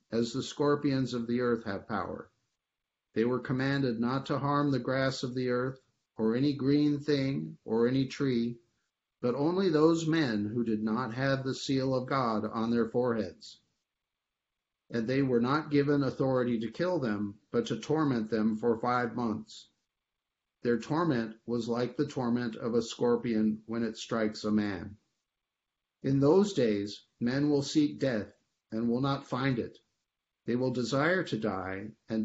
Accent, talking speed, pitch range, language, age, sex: American, 165 wpm, 115-140 Hz, English, 50-69, male